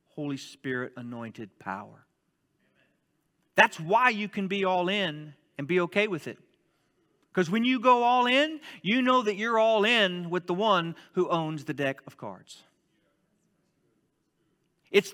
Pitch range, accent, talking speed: 165-225 Hz, American, 150 wpm